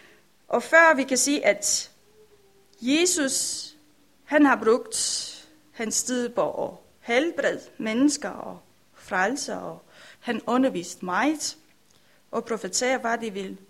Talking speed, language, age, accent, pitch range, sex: 110 wpm, Danish, 30-49, native, 220-275 Hz, female